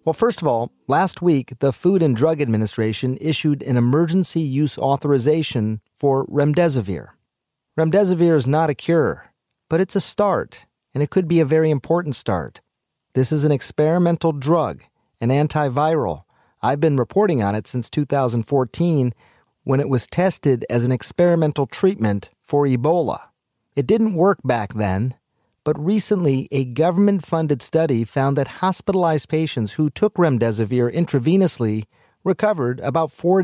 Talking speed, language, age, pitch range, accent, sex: 145 wpm, English, 40-59, 125-170 Hz, American, male